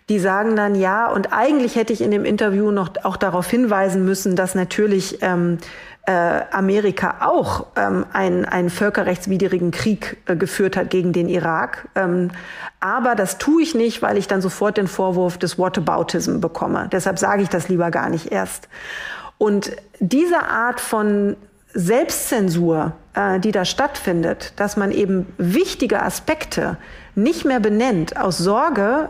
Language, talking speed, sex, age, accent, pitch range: German, 155 wpm, female, 40-59, German, 185-225 Hz